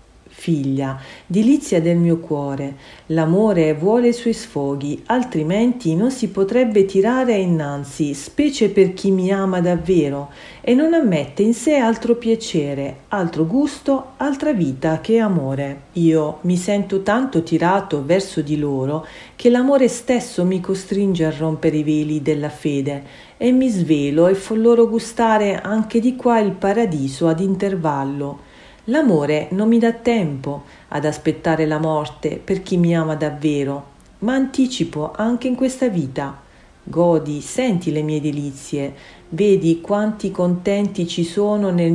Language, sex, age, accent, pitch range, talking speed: Italian, female, 40-59, native, 150-220 Hz, 140 wpm